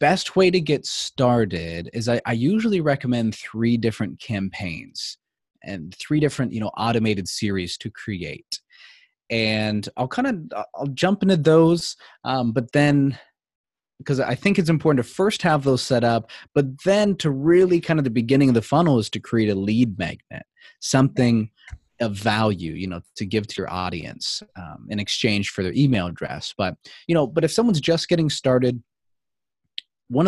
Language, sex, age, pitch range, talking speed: English, male, 30-49, 105-145 Hz, 175 wpm